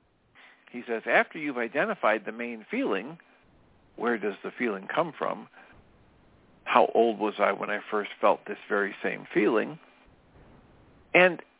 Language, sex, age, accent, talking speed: English, male, 50-69, American, 140 wpm